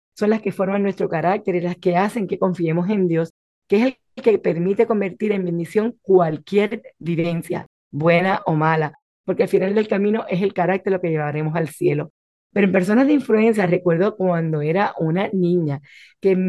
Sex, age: female, 40-59